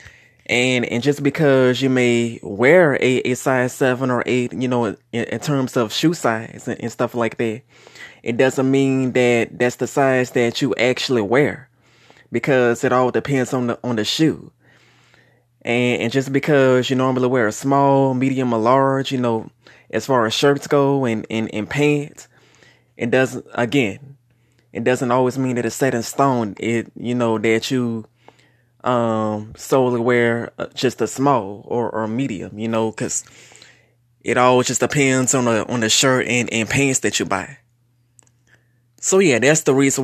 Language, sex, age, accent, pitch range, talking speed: English, male, 20-39, American, 115-130 Hz, 180 wpm